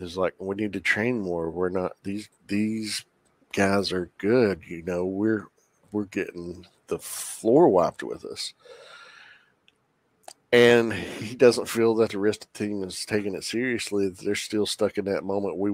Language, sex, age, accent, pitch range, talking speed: English, male, 50-69, American, 95-110 Hz, 170 wpm